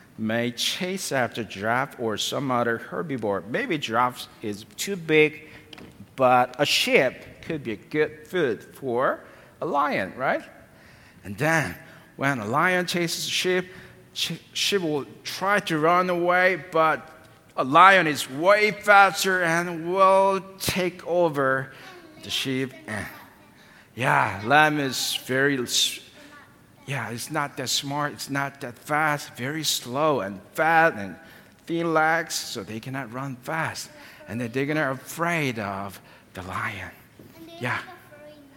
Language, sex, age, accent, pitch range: Korean, male, 50-69, American, 120-170 Hz